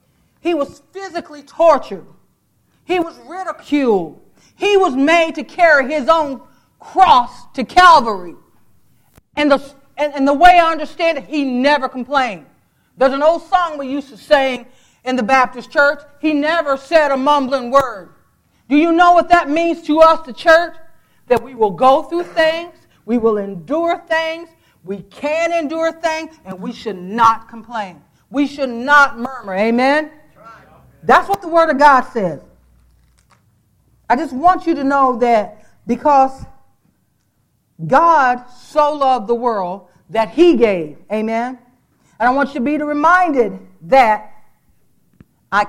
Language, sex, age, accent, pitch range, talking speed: English, female, 40-59, American, 230-315 Hz, 150 wpm